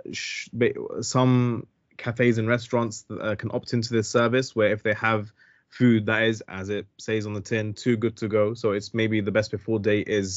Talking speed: 205 wpm